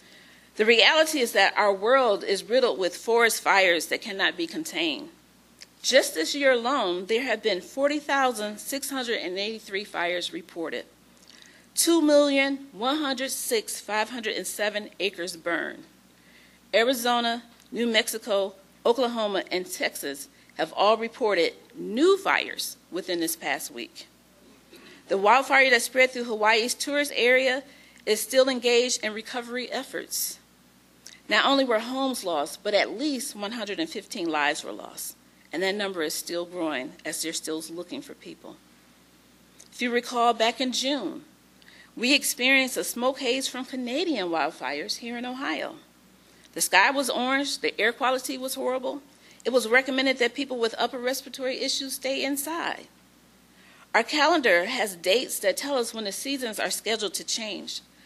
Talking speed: 135 wpm